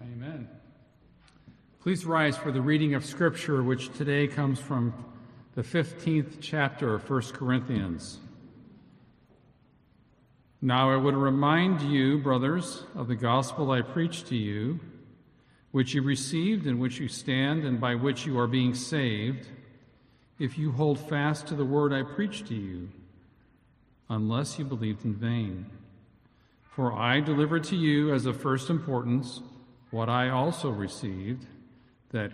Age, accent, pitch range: 50-69, American, 120-145 Hz